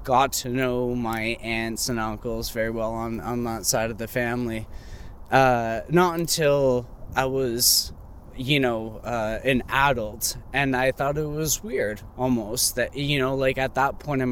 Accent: American